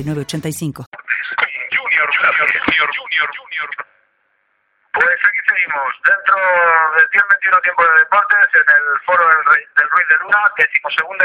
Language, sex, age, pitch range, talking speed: Spanish, male, 30-49, 120-180 Hz, 115 wpm